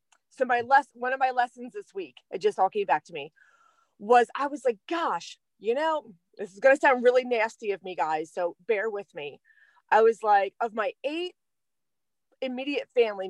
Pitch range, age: 220-335 Hz, 30-49